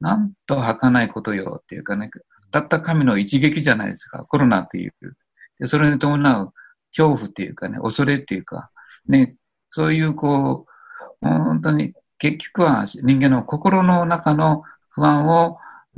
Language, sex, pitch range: Japanese, male, 115-150 Hz